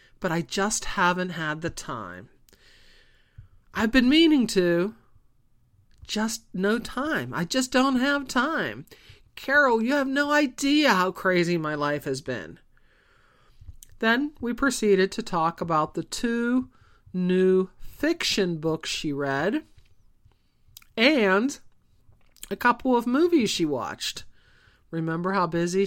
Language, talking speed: English, 125 wpm